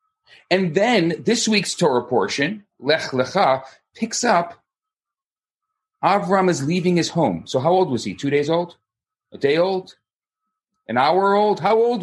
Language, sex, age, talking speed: English, male, 30-49, 155 wpm